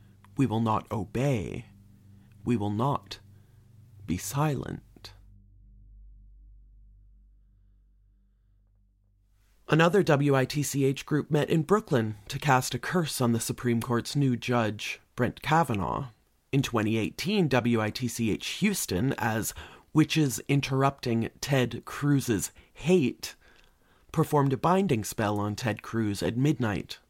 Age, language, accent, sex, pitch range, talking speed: 30-49, English, American, male, 105-140 Hz, 100 wpm